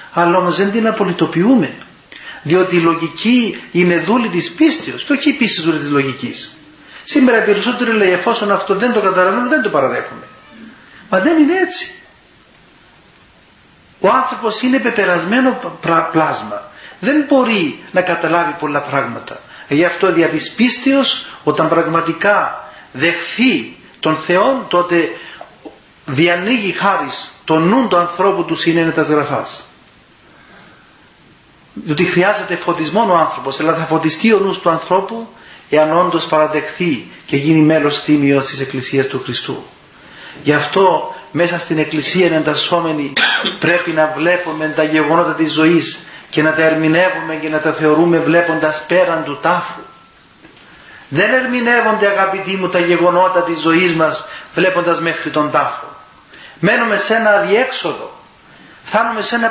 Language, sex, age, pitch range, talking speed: Greek, male, 40-59, 155-205 Hz, 130 wpm